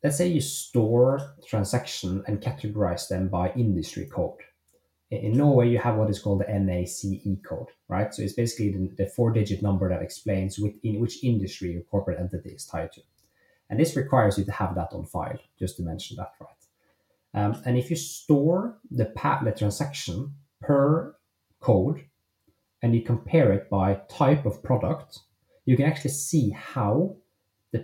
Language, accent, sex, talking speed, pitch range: English, Norwegian, male, 170 wpm, 100-130 Hz